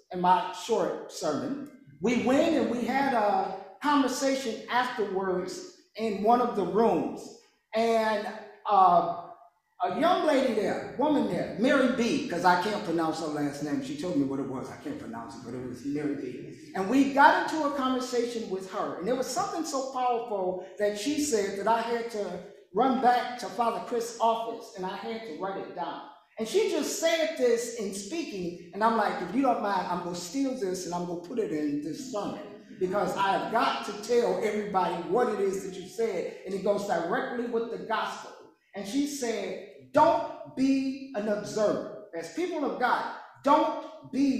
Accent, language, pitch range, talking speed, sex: American, English, 195-275 Hz, 195 wpm, male